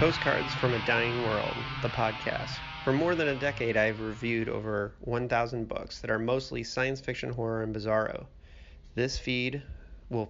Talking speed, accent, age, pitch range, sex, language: 165 wpm, American, 30-49, 115-155 Hz, male, English